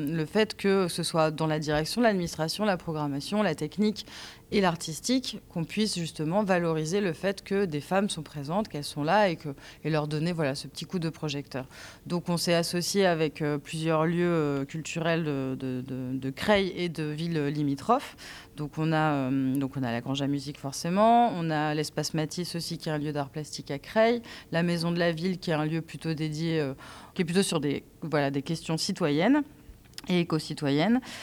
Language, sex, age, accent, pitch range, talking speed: French, female, 30-49, French, 145-175 Hz, 195 wpm